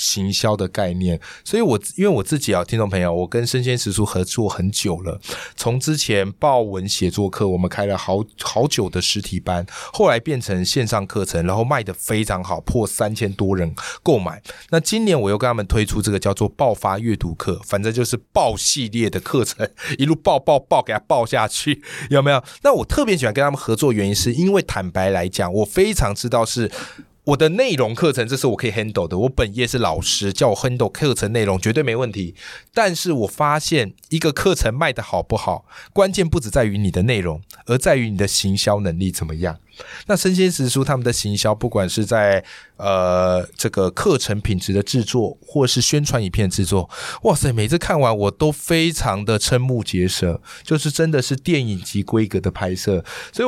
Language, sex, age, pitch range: Chinese, male, 20-39, 100-140 Hz